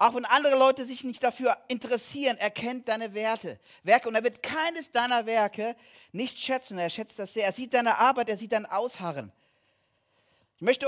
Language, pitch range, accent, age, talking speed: German, 220-265 Hz, German, 40-59, 195 wpm